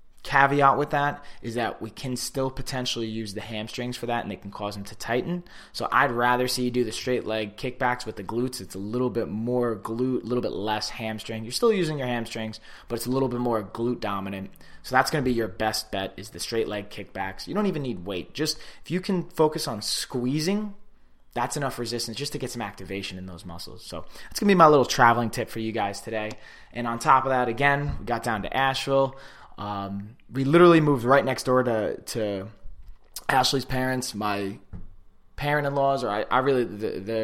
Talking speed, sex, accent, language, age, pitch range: 220 wpm, male, American, English, 20-39, 105-130 Hz